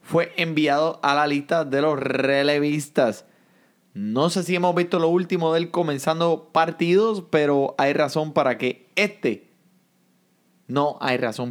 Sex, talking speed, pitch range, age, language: male, 145 wpm, 125-175 Hz, 30-49, Spanish